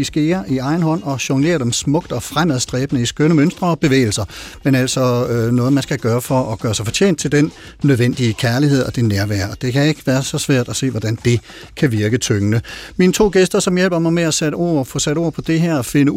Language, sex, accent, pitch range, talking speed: Danish, male, native, 125-160 Hz, 240 wpm